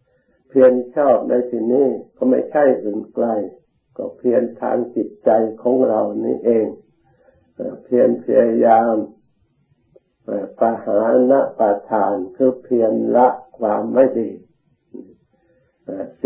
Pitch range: 110-125 Hz